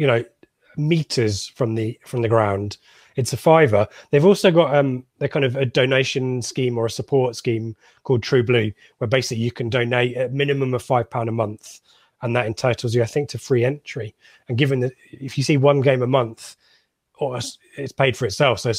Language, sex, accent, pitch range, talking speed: English, male, British, 120-145 Hz, 210 wpm